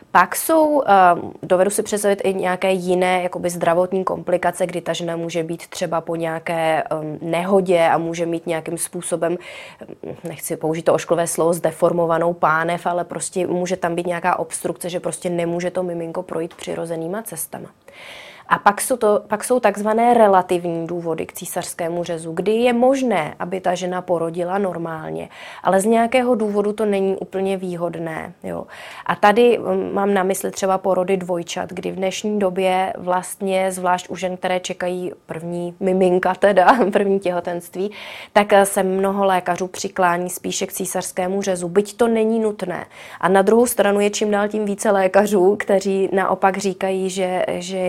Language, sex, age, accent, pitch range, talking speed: Czech, female, 20-39, native, 175-195 Hz, 155 wpm